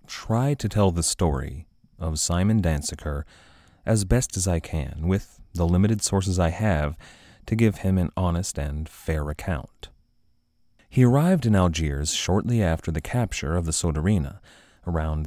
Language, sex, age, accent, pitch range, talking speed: English, male, 30-49, American, 80-100 Hz, 155 wpm